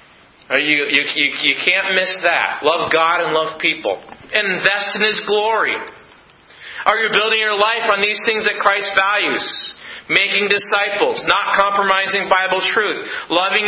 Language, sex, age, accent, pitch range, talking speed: English, male, 40-59, American, 190-245 Hz, 150 wpm